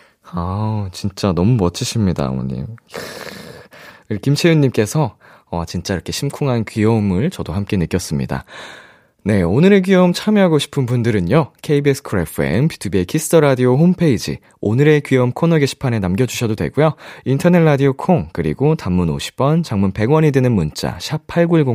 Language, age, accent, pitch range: Korean, 20-39, native, 100-155 Hz